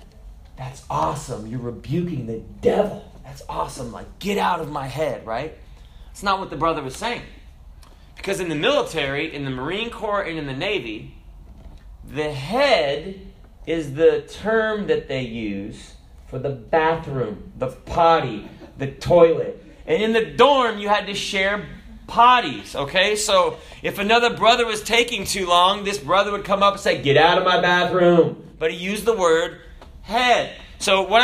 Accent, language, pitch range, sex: American, English, 135-210 Hz, male